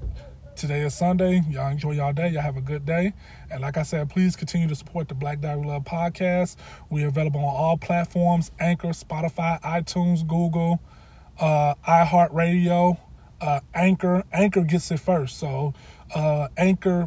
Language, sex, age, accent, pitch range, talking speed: English, male, 20-39, American, 145-175 Hz, 160 wpm